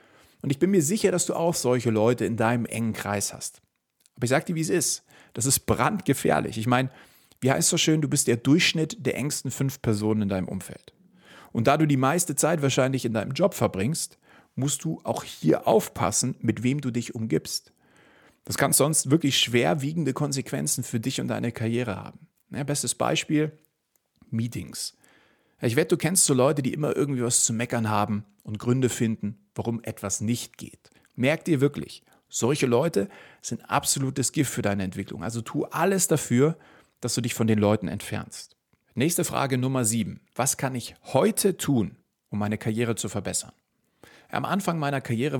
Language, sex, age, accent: German, male, 40-59, German